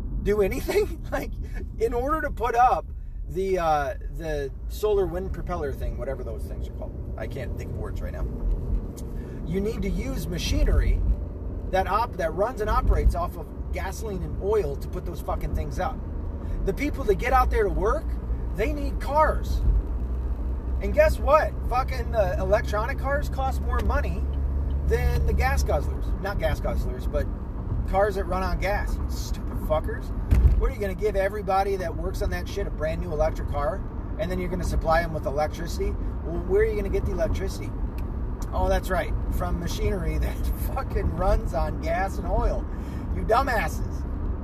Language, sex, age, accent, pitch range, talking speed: English, male, 30-49, American, 70-95 Hz, 180 wpm